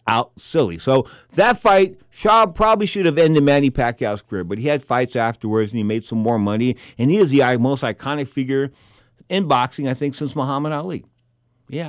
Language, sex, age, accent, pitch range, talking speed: English, male, 50-69, American, 110-145 Hz, 195 wpm